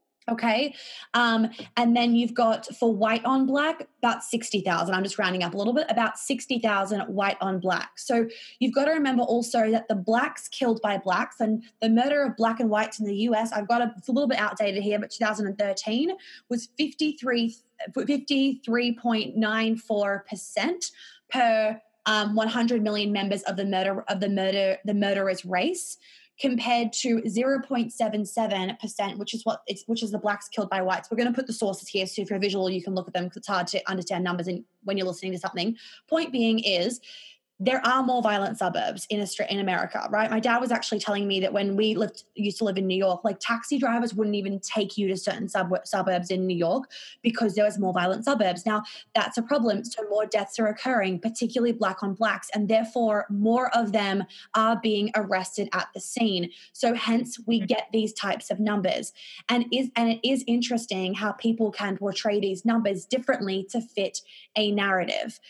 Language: English